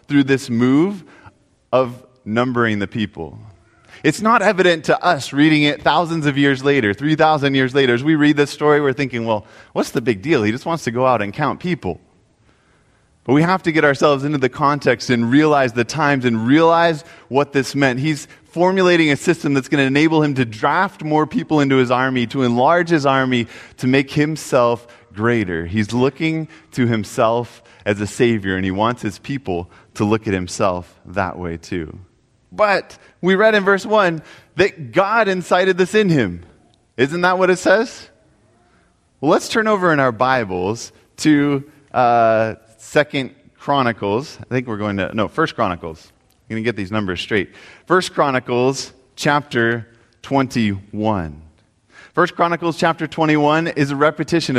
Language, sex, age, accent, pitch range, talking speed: English, male, 20-39, American, 115-155 Hz, 175 wpm